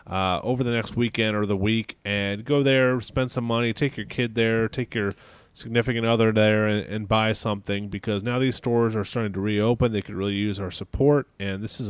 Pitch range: 100-125 Hz